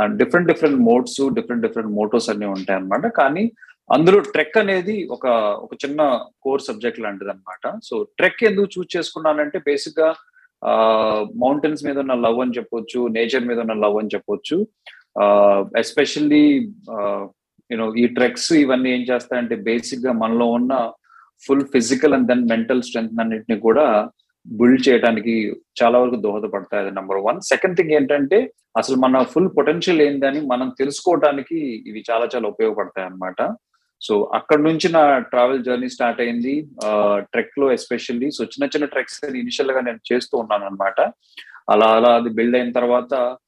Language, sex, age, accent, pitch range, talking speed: Telugu, male, 30-49, native, 110-150 Hz, 150 wpm